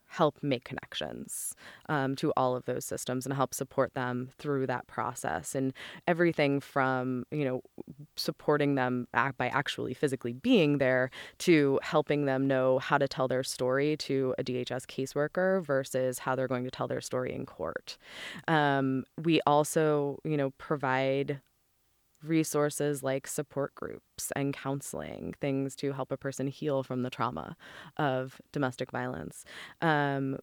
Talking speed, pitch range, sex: 150 wpm, 130-150 Hz, female